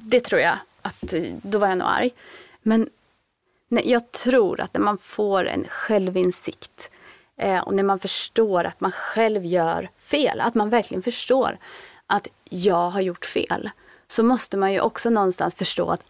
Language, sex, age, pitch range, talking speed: Swedish, female, 30-49, 195-255 Hz, 170 wpm